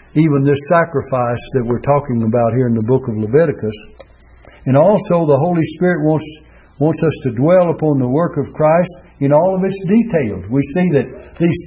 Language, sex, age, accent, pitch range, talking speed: English, male, 60-79, American, 130-170 Hz, 190 wpm